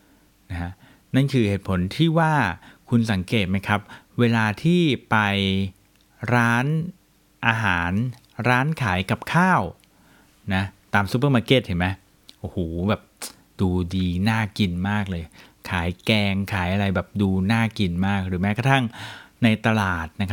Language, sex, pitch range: Thai, male, 95-125 Hz